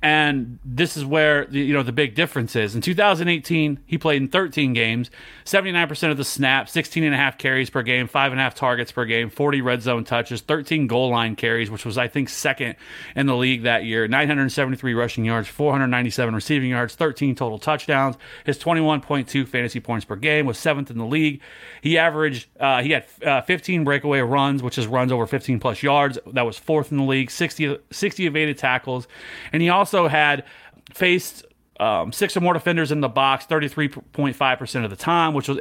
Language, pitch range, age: English, 125-155 Hz, 30-49